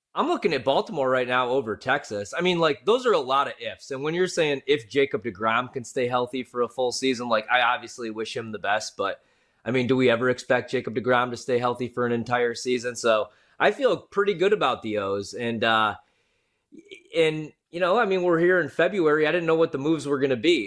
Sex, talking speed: male, 240 wpm